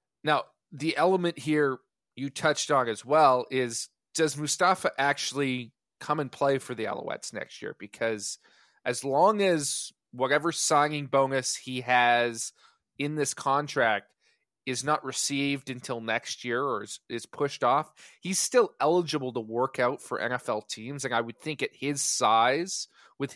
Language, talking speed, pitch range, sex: English, 155 wpm, 125-150 Hz, male